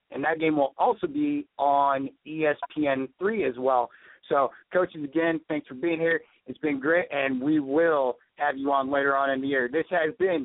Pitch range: 145-170 Hz